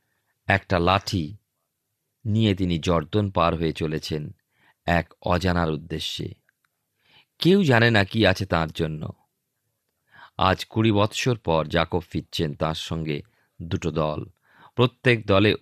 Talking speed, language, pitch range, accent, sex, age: 115 wpm, Bengali, 85-120 Hz, native, male, 40-59